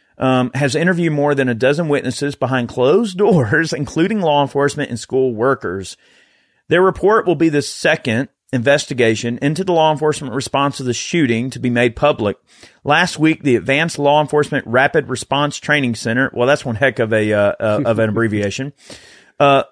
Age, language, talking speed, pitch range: 40-59, English, 175 wpm, 125-155 Hz